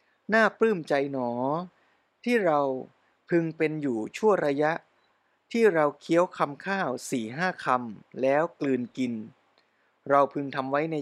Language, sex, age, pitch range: Thai, male, 20-39, 125-160 Hz